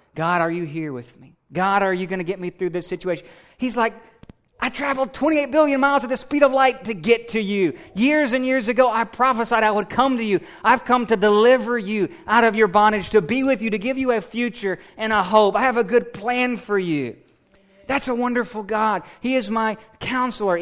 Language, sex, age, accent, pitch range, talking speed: English, male, 30-49, American, 165-225 Hz, 230 wpm